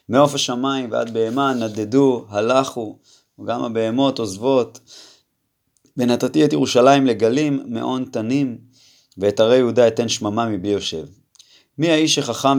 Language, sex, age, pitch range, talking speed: Hebrew, male, 20-39, 115-135 Hz, 120 wpm